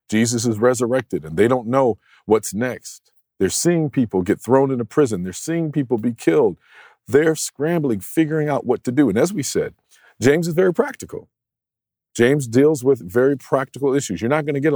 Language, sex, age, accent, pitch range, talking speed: English, male, 50-69, American, 105-145 Hz, 190 wpm